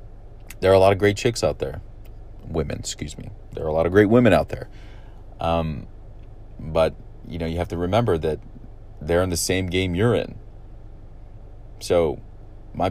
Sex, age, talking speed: male, 40-59, 180 wpm